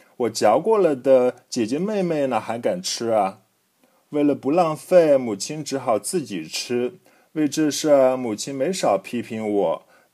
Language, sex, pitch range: Chinese, male, 125-165 Hz